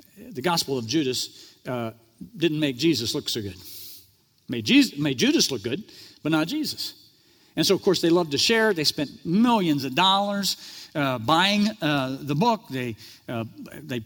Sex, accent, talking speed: male, American, 175 wpm